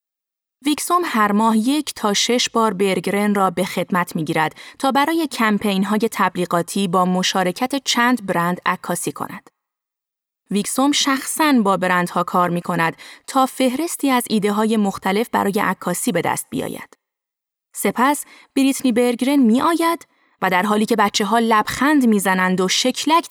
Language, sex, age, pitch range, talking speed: Persian, female, 30-49, 190-255 Hz, 150 wpm